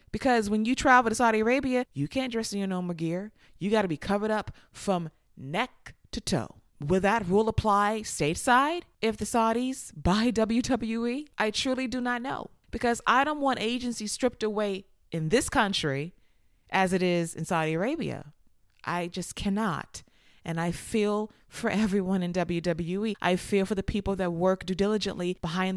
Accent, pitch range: American, 185-235 Hz